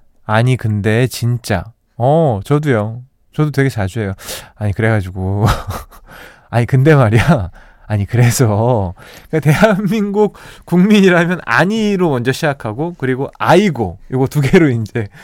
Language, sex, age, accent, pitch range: Korean, male, 20-39, native, 110-160 Hz